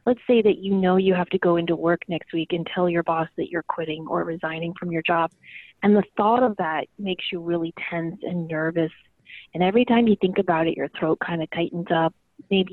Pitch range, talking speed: 170-210 Hz, 235 wpm